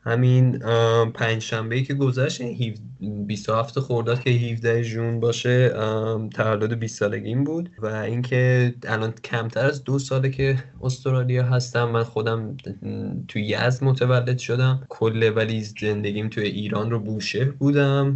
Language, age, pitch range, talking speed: Persian, 20-39, 105-120 Hz, 130 wpm